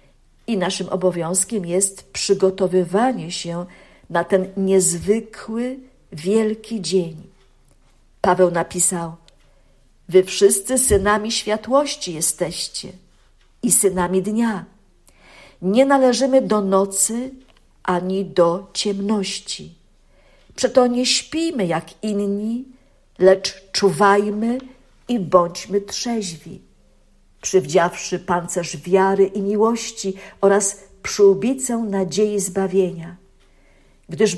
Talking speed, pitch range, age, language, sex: 85 wpm, 185-220 Hz, 50-69, Polish, female